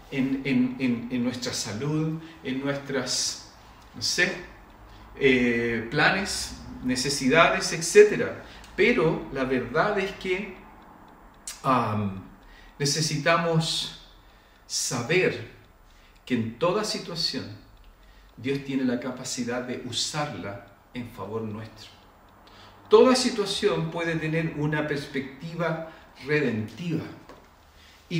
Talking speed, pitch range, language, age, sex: 80 wpm, 110-165 Hz, Spanish, 50-69, male